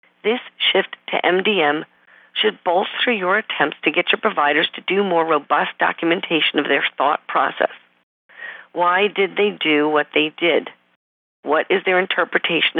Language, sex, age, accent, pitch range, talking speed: English, female, 50-69, American, 165-215 Hz, 150 wpm